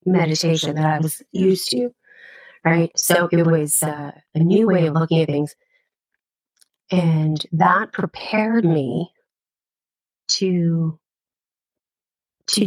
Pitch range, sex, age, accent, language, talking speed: 155-175 Hz, female, 30-49, American, English, 115 wpm